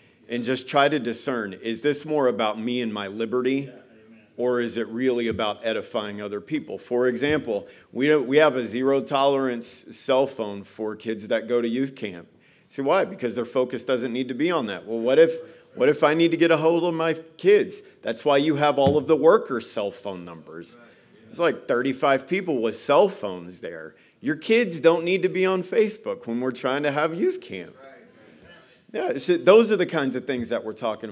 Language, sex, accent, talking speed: English, male, American, 200 wpm